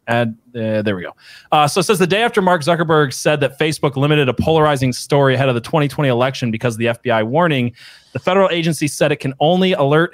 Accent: American